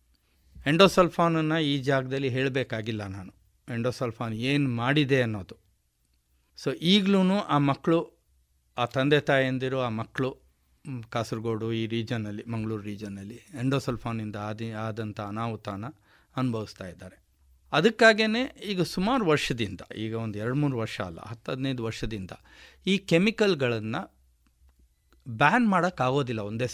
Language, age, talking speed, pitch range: Kannada, 50-69, 105 wpm, 105-145 Hz